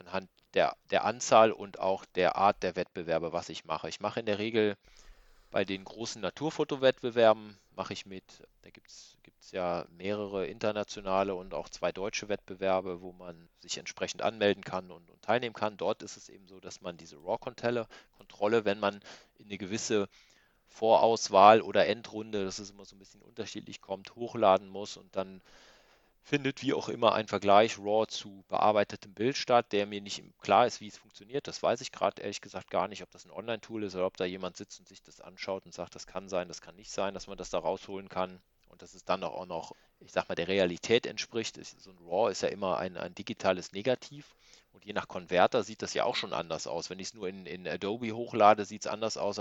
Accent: German